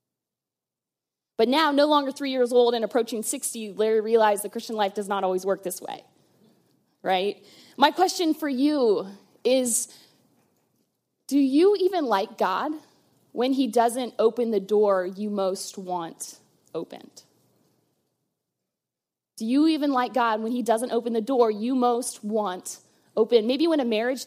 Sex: female